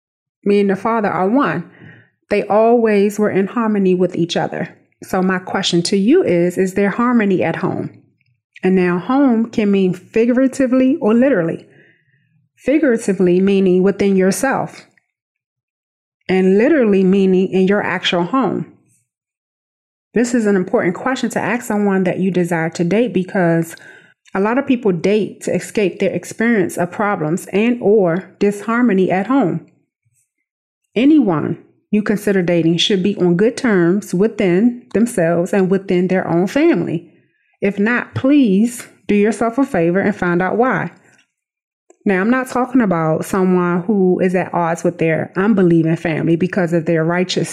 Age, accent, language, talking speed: 30-49, American, English, 150 wpm